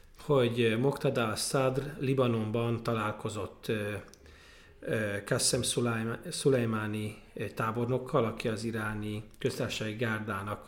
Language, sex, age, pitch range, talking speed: Hungarian, male, 40-59, 105-130 Hz, 75 wpm